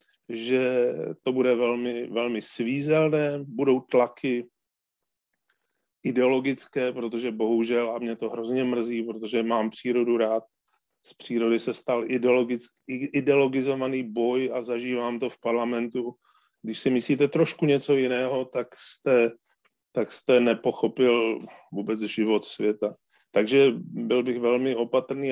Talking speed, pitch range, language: 115 wpm, 120-135 Hz, Czech